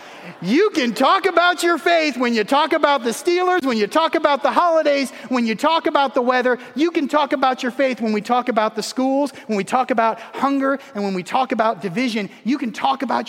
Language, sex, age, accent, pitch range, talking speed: English, male, 30-49, American, 220-285 Hz, 230 wpm